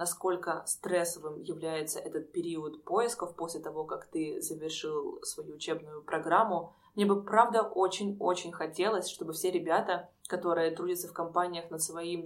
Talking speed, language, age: 135 wpm, Russian, 20-39